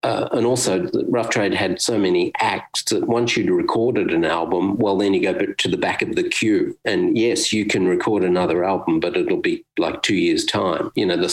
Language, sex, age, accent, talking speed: English, male, 50-69, Australian, 220 wpm